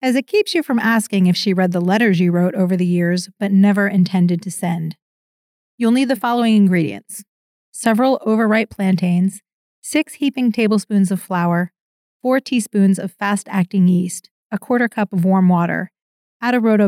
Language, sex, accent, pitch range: English, female, American, 185-235 Hz